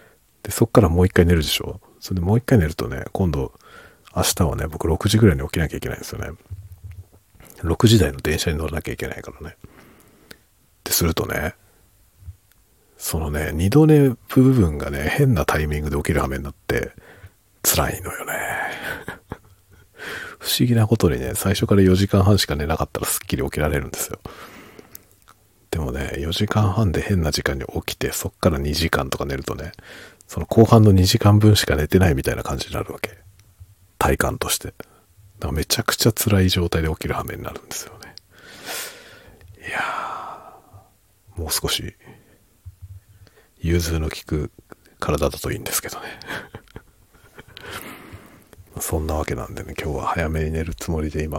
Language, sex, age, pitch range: Japanese, male, 50-69, 80-100 Hz